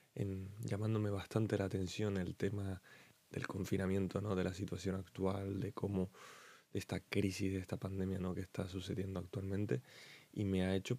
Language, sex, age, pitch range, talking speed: Spanish, male, 20-39, 95-100 Hz, 165 wpm